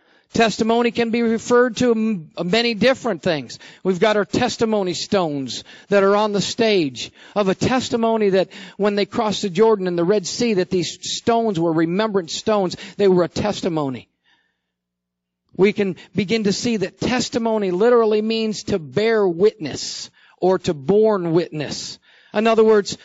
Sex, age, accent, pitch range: male, 50-69, American, 195-245 Hz